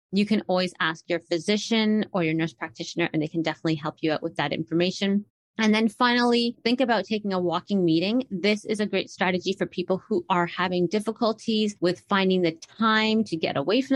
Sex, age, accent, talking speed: female, 30-49, American, 205 wpm